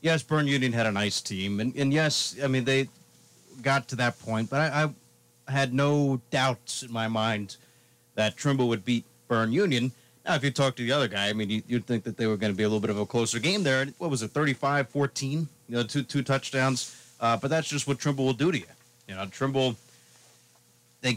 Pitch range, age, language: 120-145 Hz, 40-59, English